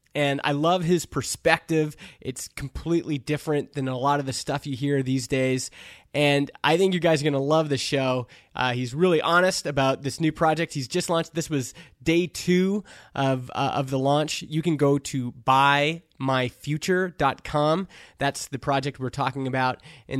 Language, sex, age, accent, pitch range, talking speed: English, male, 20-39, American, 135-160 Hz, 180 wpm